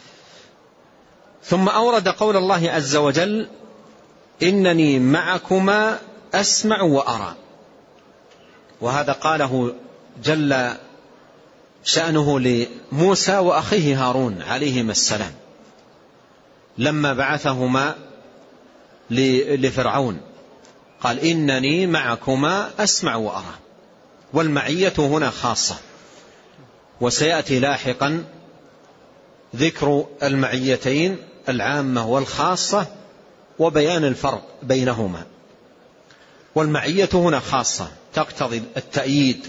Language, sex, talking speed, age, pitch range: Arabic, male, 65 wpm, 40-59, 130-170 Hz